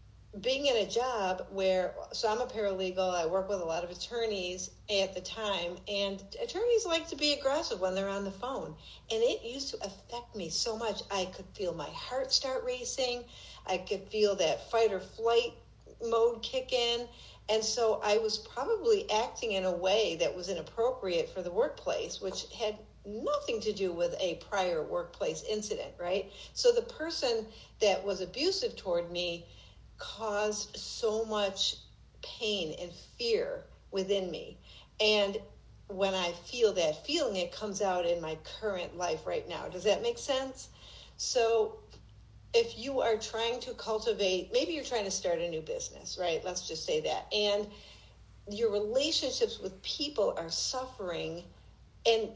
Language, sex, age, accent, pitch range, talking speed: English, female, 50-69, American, 190-265 Hz, 165 wpm